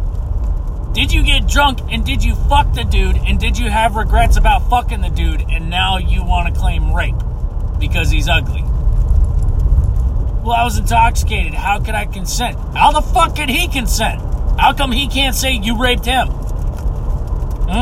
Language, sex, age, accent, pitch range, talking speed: English, male, 30-49, American, 70-100 Hz, 175 wpm